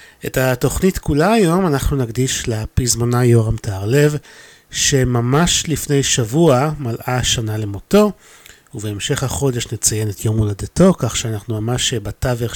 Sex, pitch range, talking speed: male, 110-140 Hz, 120 wpm